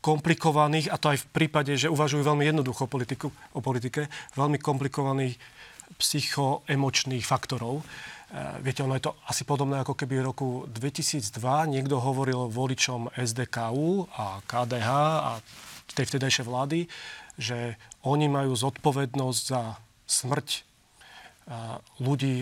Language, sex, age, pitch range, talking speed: Slovak, male, 30-49, 130-145 Hz, 125 wpm